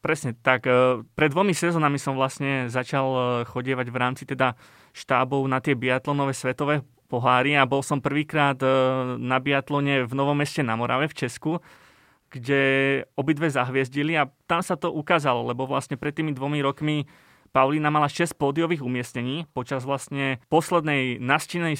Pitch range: 130-155 Hz